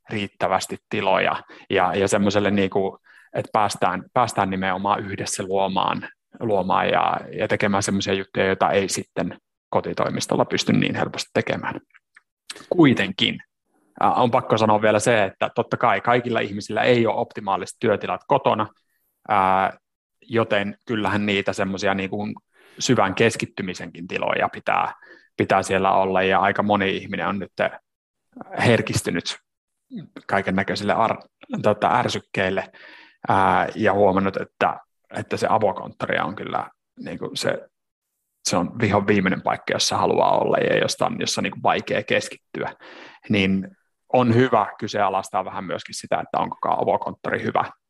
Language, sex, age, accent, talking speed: Finnish, male, 30-49, native, 130 wpm